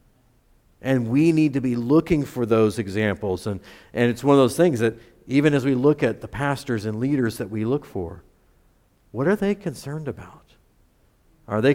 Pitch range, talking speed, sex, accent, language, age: 115-165 Hz, 190 wpm, male, American, English, 50-69